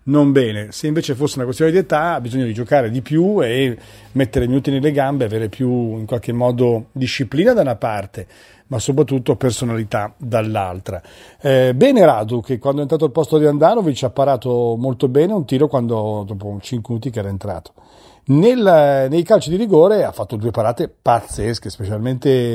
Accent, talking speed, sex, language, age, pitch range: native, 180 wpm, male, Italian, 40-59, 115-140 Hz